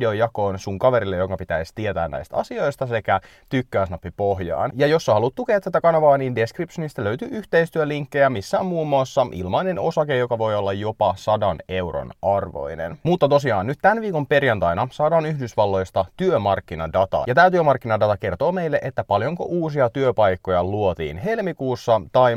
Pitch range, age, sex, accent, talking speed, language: 95-145 Hz, 30-49, male, native, 150 wpm, Finnish